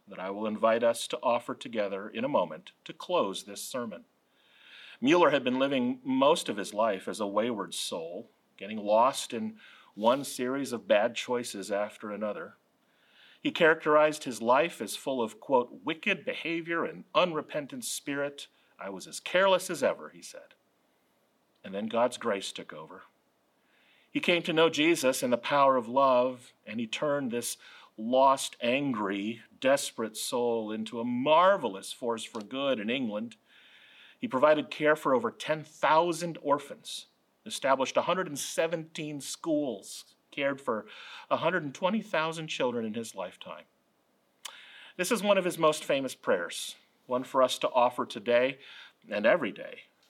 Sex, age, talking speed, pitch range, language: male, 40-59, 150 wpm, 125-210 Hz, English